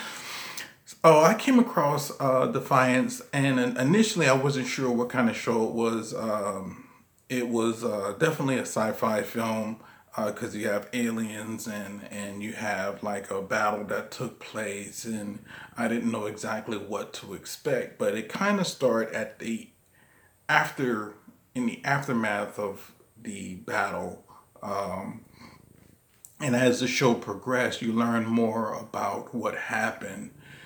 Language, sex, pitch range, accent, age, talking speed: English, male, 110-135 Hz, American, 40-59, 145 wpm